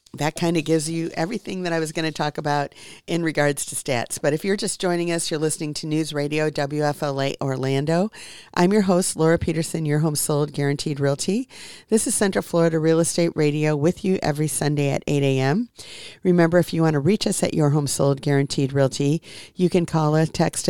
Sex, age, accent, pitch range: female, 50-69, American, 145-170 Hz